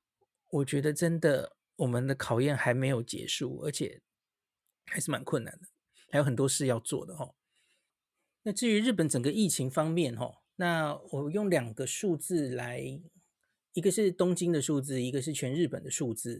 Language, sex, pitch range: Chinese, male, 135-190 Hz